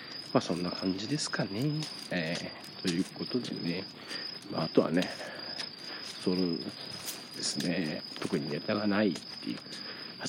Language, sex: Japanese, male